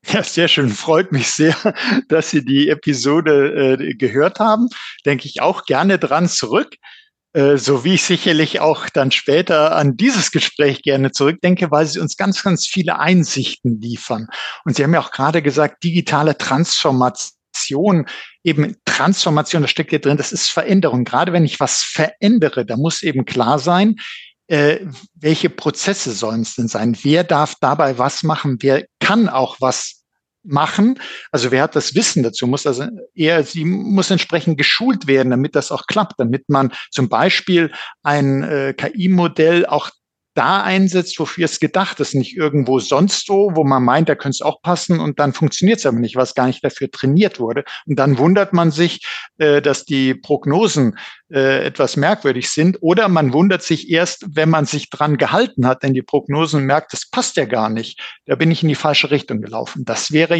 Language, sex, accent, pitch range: German, male, German, 135-175 Hz